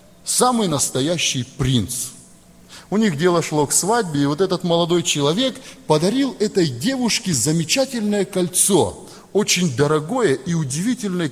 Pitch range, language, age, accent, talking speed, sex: 165-235 Hz, Russian, 30-49, native, 120 wpm, male